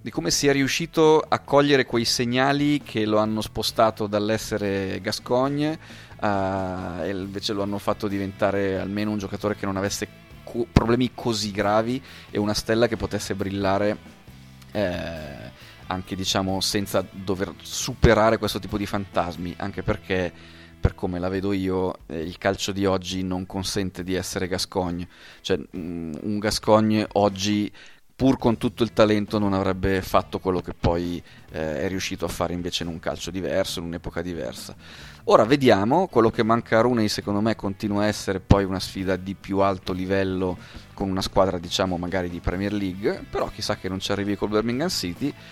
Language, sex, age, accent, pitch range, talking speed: Italian, male, 30-49, native, 95-110 Hz, 165 wpm